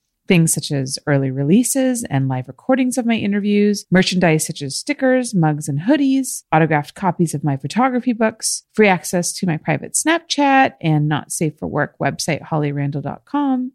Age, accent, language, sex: 30-49, American, English, female